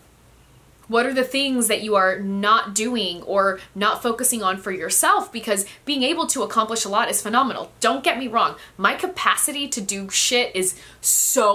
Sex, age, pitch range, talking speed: female, 20-39, 200-265 Hz, 180 wpm